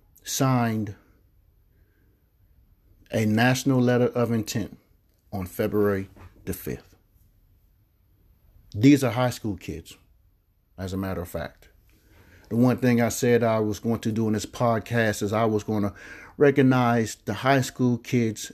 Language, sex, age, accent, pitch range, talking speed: English, male, 50-69, American, 100-125 Hz, 140 wpm